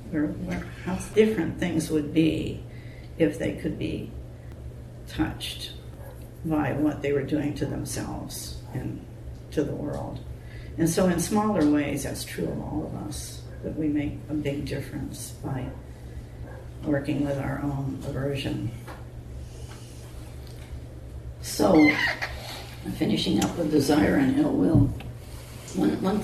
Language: English